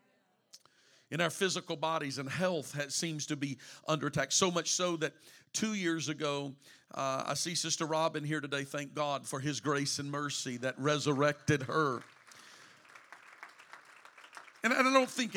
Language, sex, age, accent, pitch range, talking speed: English, male, 50-69, American, 150-180 Hz, 155 wpm